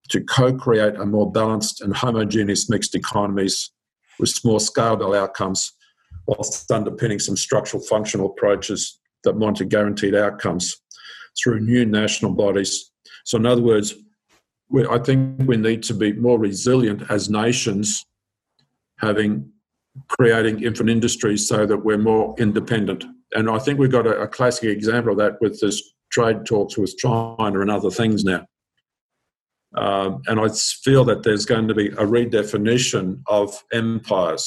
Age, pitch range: 50-69, 105-120 Hz